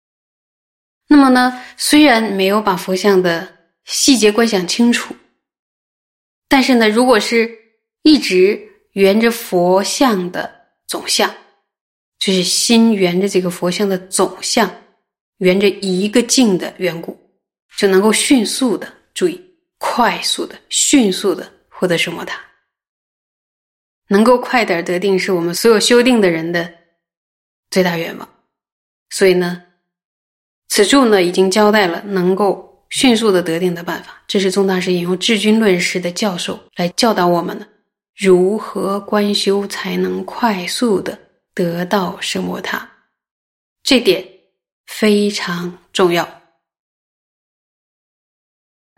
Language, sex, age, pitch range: Chinese, female, 20-39, 180-225 Hz